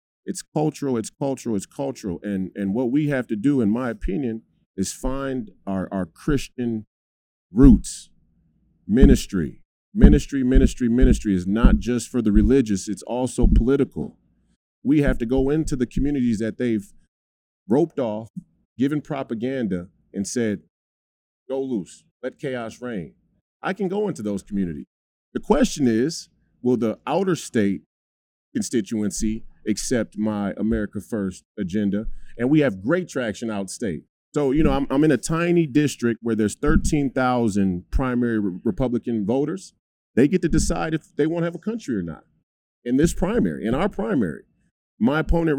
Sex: male